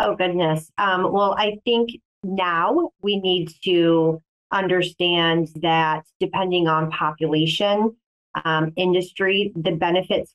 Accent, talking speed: American, 110 wpm